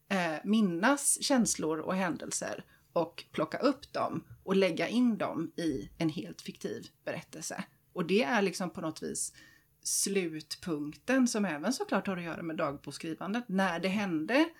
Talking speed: 150 wpm